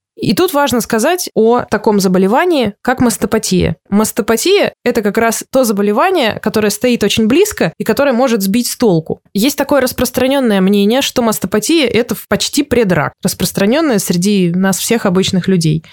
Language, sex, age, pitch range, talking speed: Russian, female, 20-39, 185-235 Hz, 150 wpm